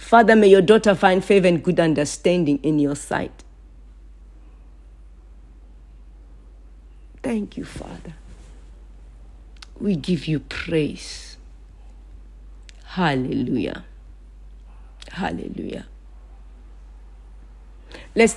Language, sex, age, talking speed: English, female, 50-69, 70 wpm